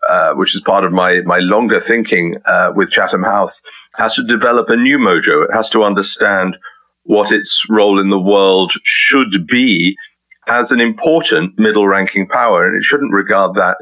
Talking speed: 180 wpm